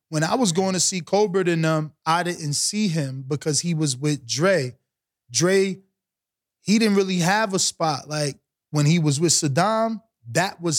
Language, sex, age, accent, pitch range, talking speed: English, male, 20-39, American, 140-180 Hz, 190 wpm